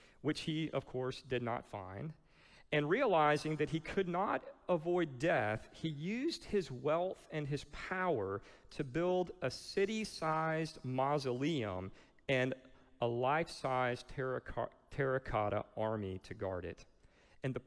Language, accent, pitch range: English, American, 115-165 Hz